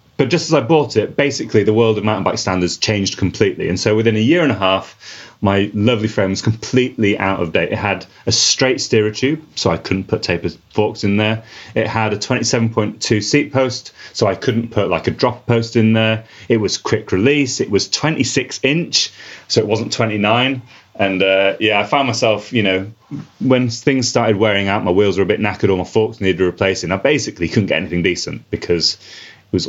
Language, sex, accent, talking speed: English, male, British, 220 wpm